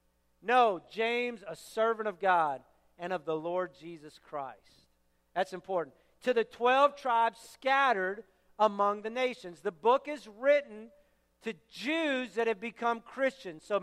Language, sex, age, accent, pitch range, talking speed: English, male, 50-69, American, 220-260 Hz, 145 wpm